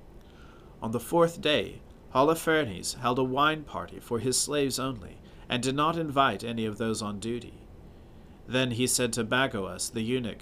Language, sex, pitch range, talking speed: English, male, 110-145 Hz, 165 wpm